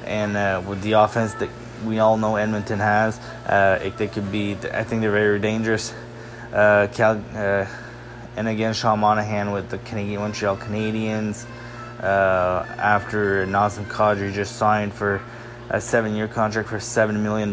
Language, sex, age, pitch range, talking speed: English, male, 20-39, 105-115 Hz, 160 wpm